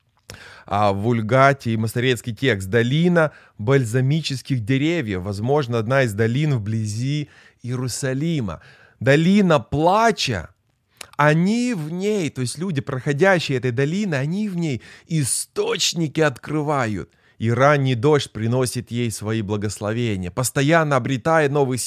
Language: Russian